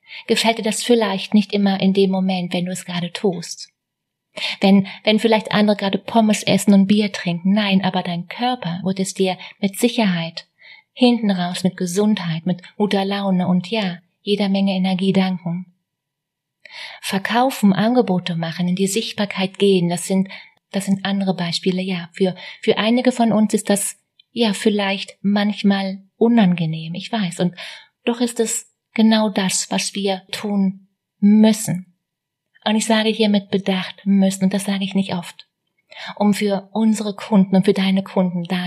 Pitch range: 185-215 Hz